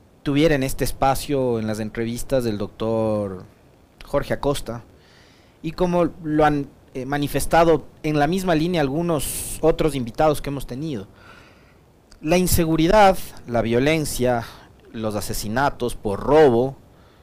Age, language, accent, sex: 40-59, Spanish, Mexican, male